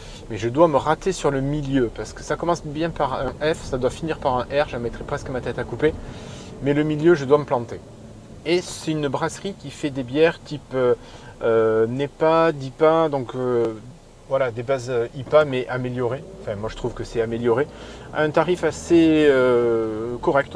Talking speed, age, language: 205 wpm, 30-49, French